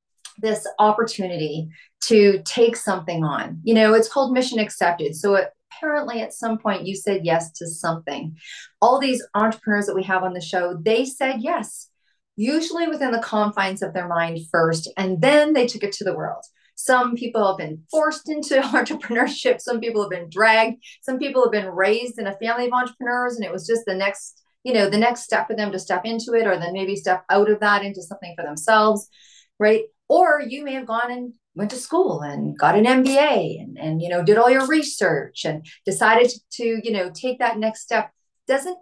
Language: English